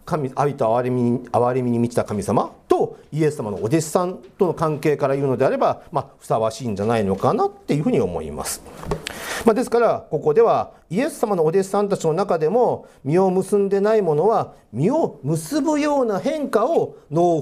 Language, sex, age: Japanese, male, 40-59